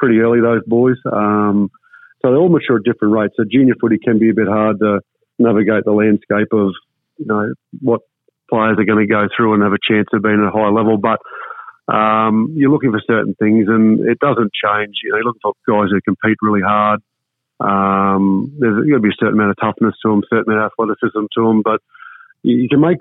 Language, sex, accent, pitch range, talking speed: English, male, Australian, 110-120 Hz, 230 wpm